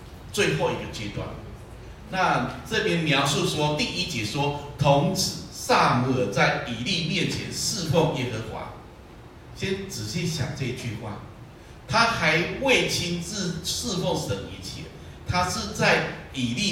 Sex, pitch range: male, 120-175 Hz